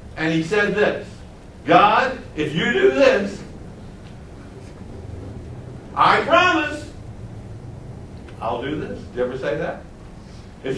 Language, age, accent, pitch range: English, 60-79, American, 120-200 Hz